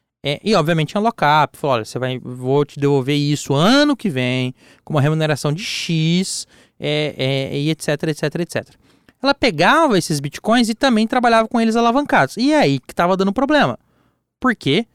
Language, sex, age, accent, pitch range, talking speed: Portuguese, male, 20-39, Brazilian, 135-190 Hz, 180 wpm